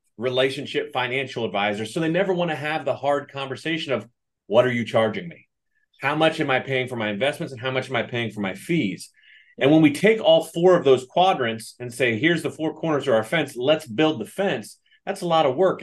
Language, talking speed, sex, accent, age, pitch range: English, 235 wpm, male, American, 30-49, 120-165 Hz